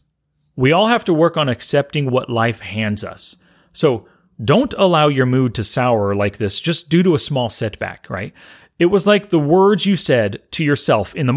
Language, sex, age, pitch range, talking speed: English, male, 30-49, 115-165 Hz, 200 wpm